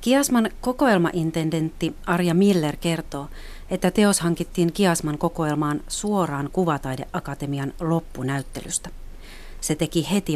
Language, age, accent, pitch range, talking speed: Finnish, 40-59, native, 140-170 Hz, 95 wpm